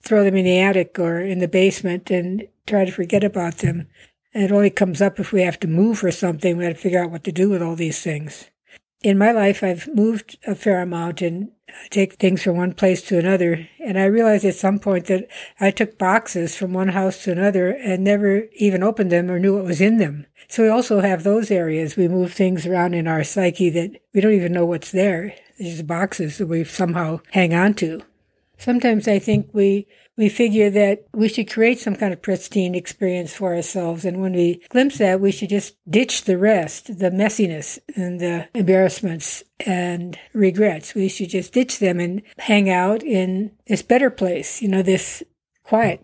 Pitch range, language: 180-210 Hz, English